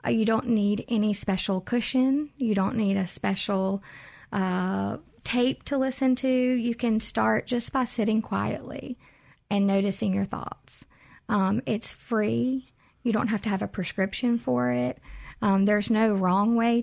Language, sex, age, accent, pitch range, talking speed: English, female, 40-59, American, 200-240 Hz, 155 wpm